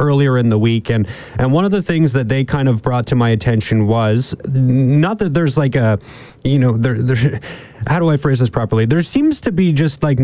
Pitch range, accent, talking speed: 115-140 Hz, American, 235 wpm